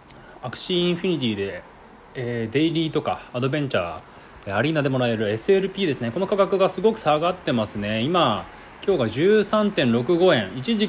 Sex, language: male, Japanese